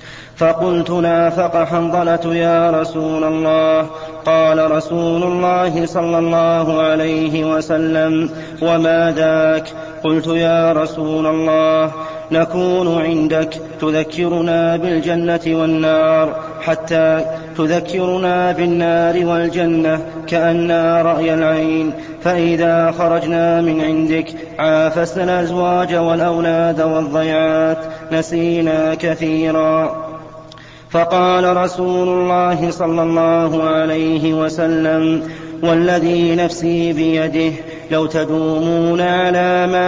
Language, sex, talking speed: Arabic, male, 85 wpm